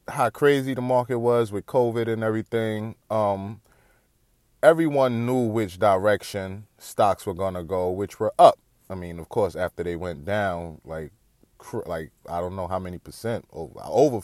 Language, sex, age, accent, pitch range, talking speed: English, male, 20-39, American, 95-120 Hz, 170 wpm